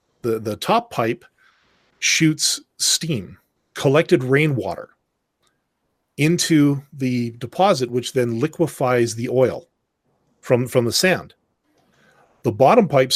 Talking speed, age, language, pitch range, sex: 105 wpm, 40-59, English, 120-155 Hz, male